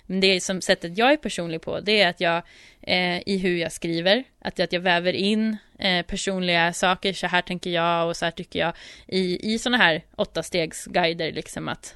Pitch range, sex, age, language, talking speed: 175-205 Hz, female, 20-39, Swedish, 220 wpm